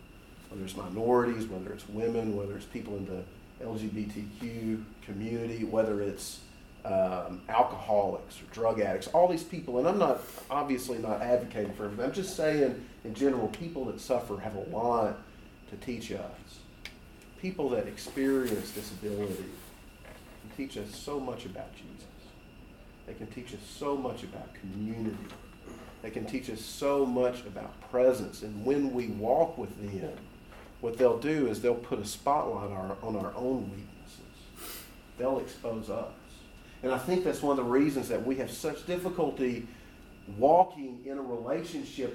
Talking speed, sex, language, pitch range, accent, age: 160 wpm, male, English, 105-145 Hz, American, 40-59